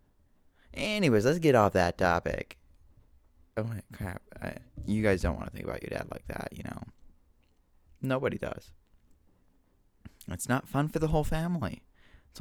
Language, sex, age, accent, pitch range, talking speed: English, male, 20-39, American, 85-125 Hz, 160 wpm